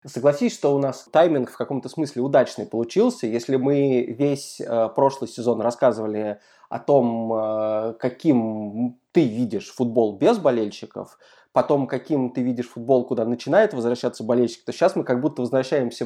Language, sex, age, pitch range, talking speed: Russian, male, 20-39, 110-140 Hz, 145 wpm